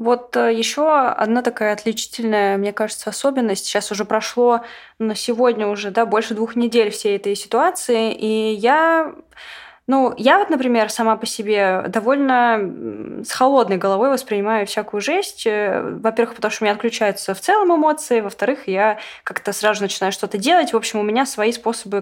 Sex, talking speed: female, 165 wpm